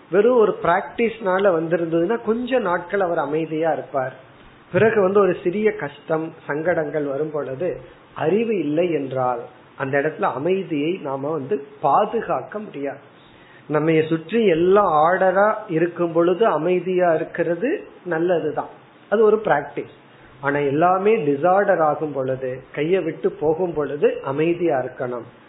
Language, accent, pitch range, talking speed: Tamil, native, 140-185 Hz, 110 wpm